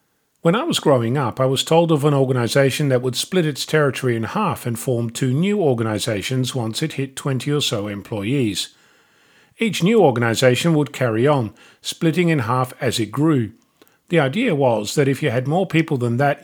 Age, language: 40-59, English